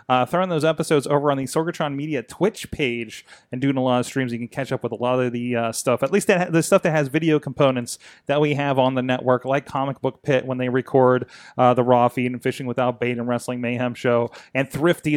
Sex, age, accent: male, 30-49, American